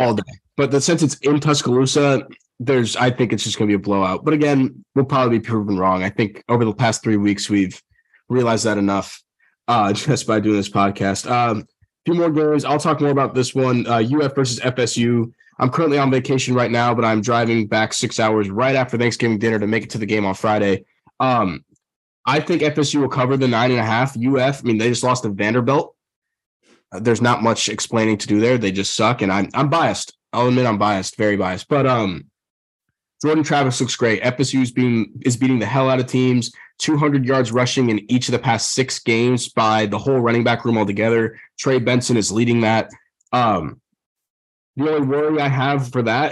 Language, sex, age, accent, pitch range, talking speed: English, male, 20-39, American, 110-130 Hz, 215 wpm